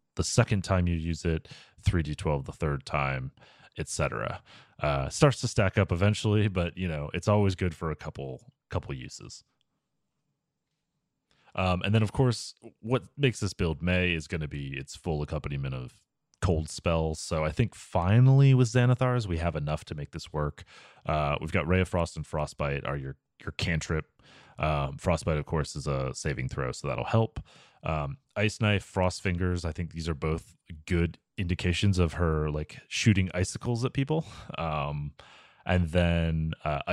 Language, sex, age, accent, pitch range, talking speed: English, male, 30-49, American, 80-105 Hz, 175 wpm